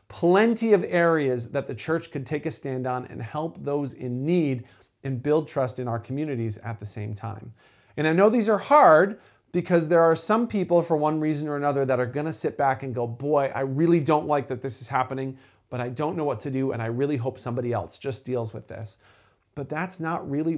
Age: 40-59